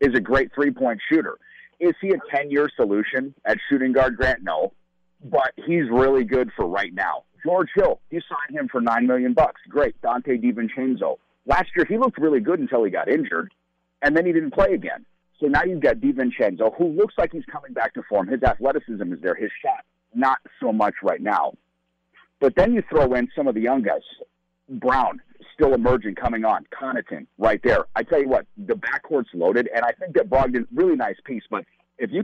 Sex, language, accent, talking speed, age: male, English, American, 205 wpm, 50-69